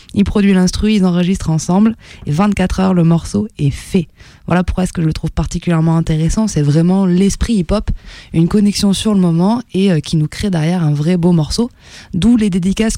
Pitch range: 160-205 Hz